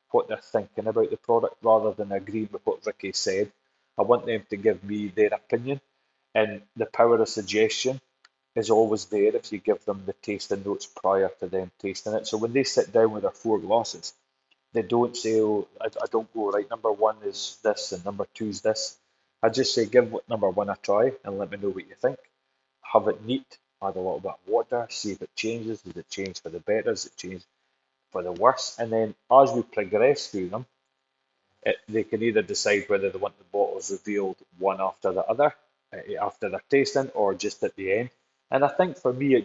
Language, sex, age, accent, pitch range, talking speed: English, male, 20-39, British, 105-140 Hz, 220 wpm